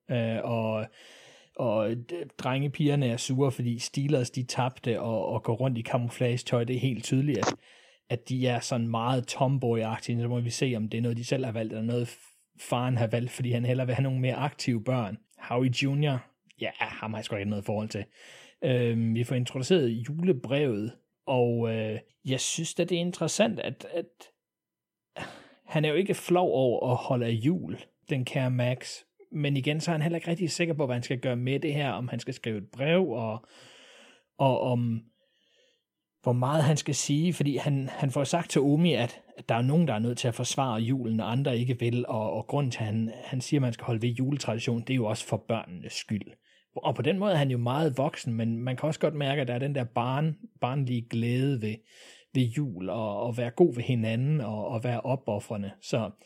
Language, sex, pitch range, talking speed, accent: English, male, 115-145 Hz, 215 wpm, Danish